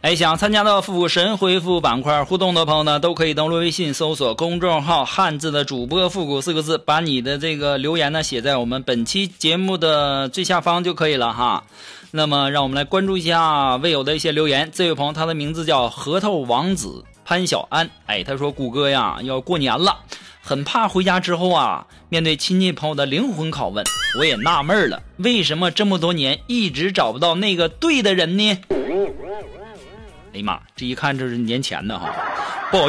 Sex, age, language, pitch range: male, 20-39, Chinese, 140-185 Hz